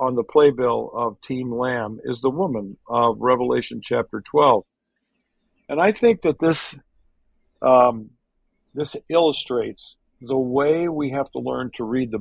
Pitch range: 130-185 Hz